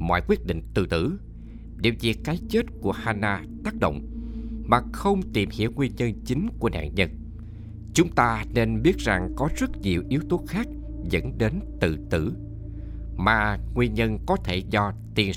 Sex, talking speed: male, 175 wpm